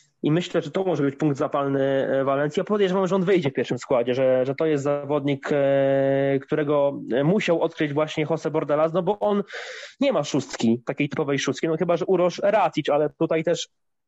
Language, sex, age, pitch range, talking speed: Polish, male, 20-39, 140-170 Hz, 190 wpm